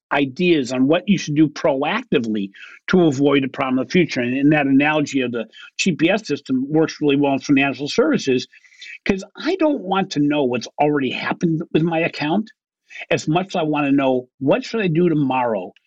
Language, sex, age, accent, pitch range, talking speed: English, male, 50-69, American, 130-170 Hz, 190 wpm